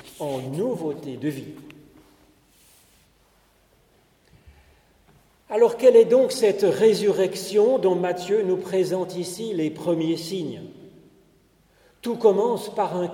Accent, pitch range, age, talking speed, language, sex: French, 155-205 Hz, 40-59, 100 wpm, French, male